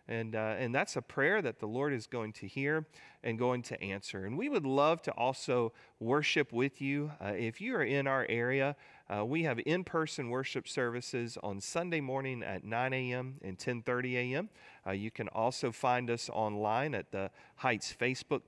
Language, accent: English, American